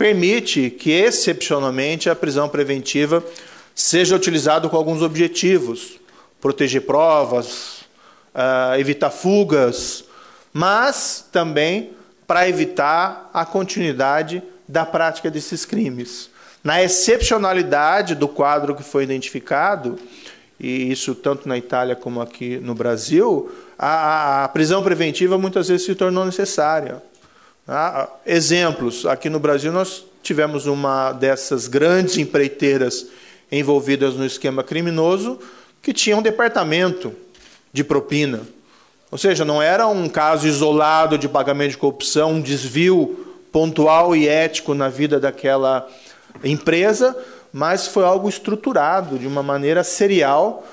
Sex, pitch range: male, 140-185 Hz